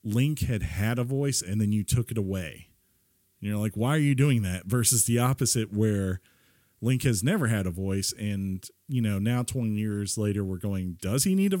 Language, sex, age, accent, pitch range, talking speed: English, male, 40-59, American, 95-120 Hz, 215 wpm